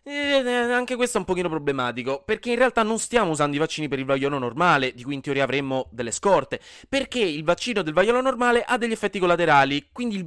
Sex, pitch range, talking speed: male, 140-205 Hz, 230 wpm